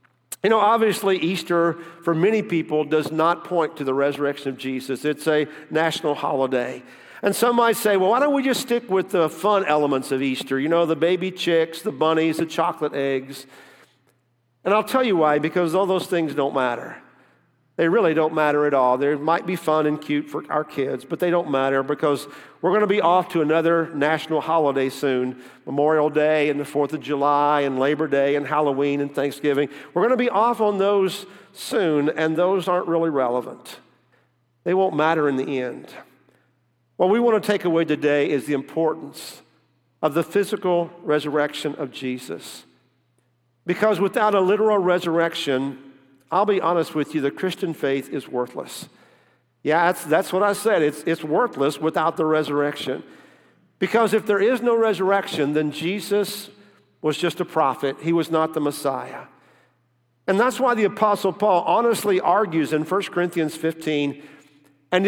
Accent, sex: American, male